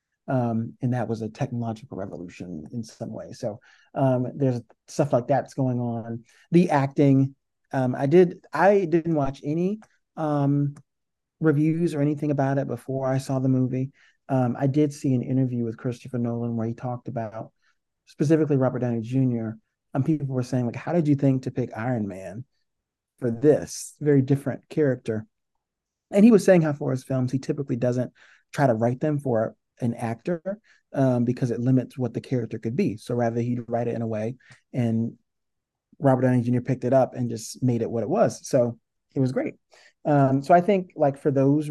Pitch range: 120-145 Hz